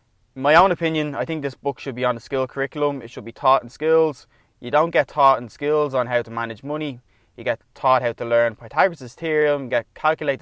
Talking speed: 230 wpm